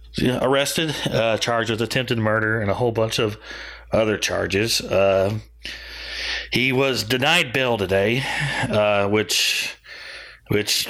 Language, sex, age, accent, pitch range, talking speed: English, male, 30-49, American, 100-120 Hz, 120 wpm